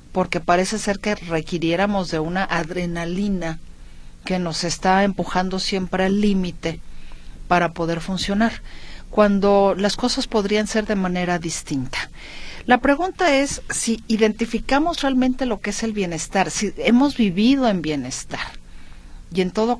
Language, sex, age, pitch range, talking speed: Spanish, female, 40-59, 165-210 Hz, 135 wpm